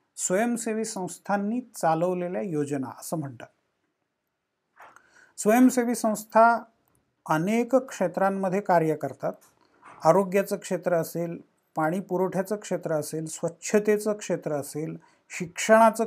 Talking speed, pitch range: 80 wpm, 170-210 Hz